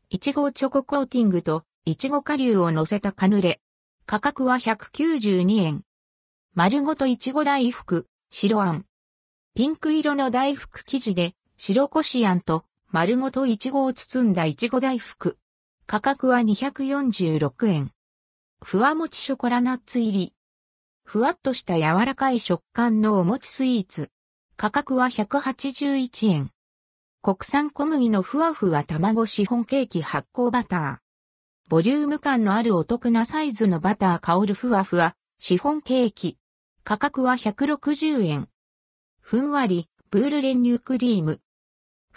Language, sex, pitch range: Japanese, female, 175-270 Hz